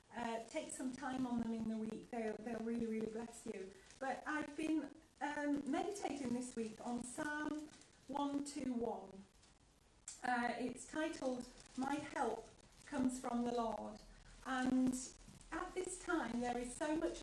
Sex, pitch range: female, 225-275 Hz